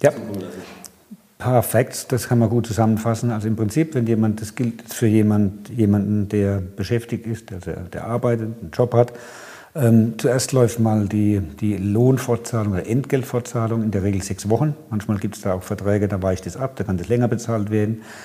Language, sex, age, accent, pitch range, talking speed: German, male, 50-69, German, 105-125 Hz, 185 wpm